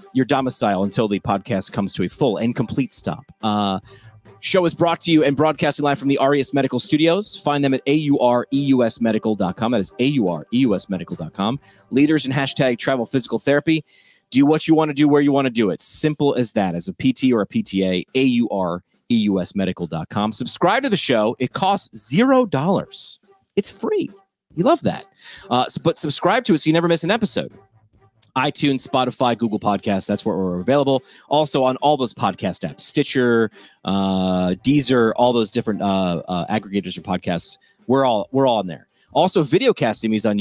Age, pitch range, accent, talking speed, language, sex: 30-49, 105-150 Hz, American, 180 wpm, English, male